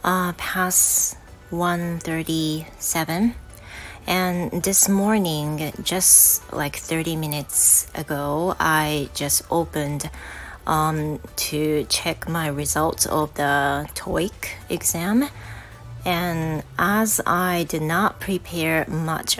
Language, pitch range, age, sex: Japanese, 145-175 Hz, 30-49, female